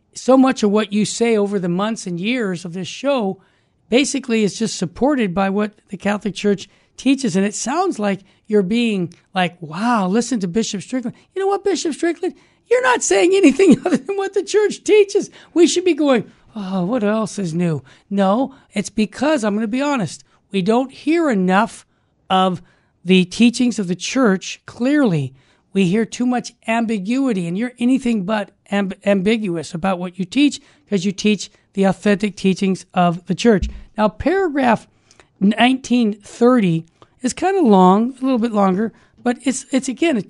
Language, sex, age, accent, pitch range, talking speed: English, male, 60-79, American, 195-255 Hz, 175 wpm